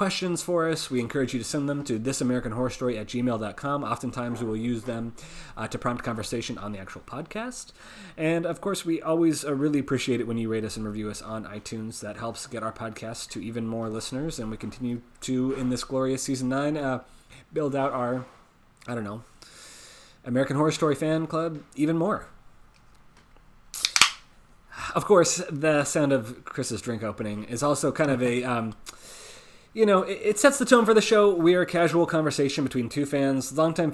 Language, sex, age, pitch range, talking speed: English, male, 30-49, 120-150 Hz, 195 wpm